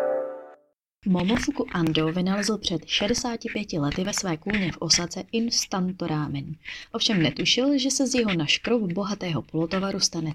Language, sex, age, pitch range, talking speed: Czech, female, 20-39, 160-210 Hz, 130 wpm